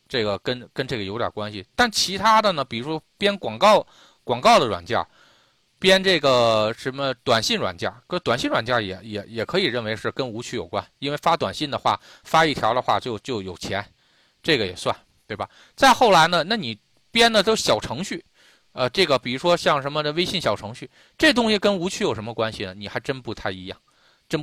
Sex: male